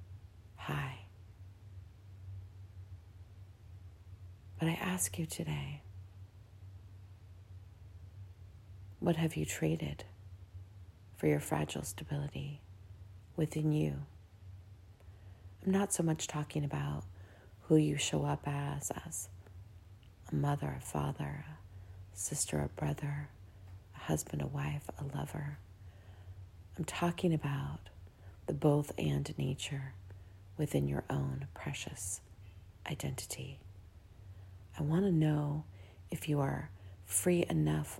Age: 40-59